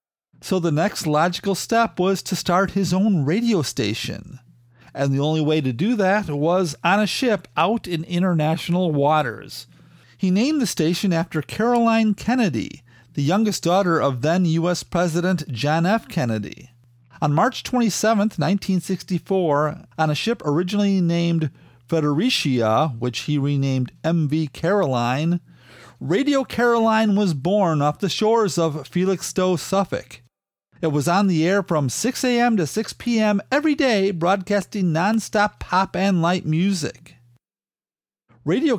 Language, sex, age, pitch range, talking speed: English, male, 40-59, 150-205 Hz, 140 wpm